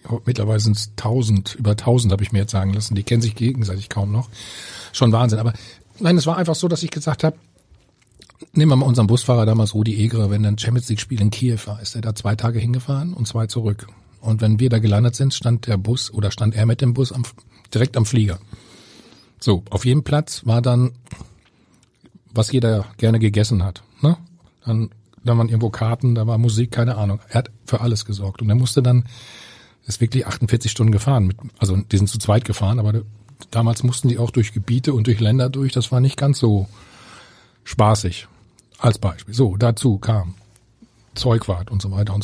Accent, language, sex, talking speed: German, German, male, 205 wpm